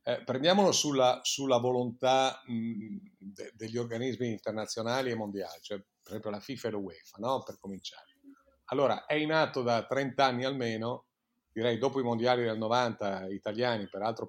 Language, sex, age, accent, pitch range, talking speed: Italian, male, 50-69, native, 105-130 Hz, 160 wpm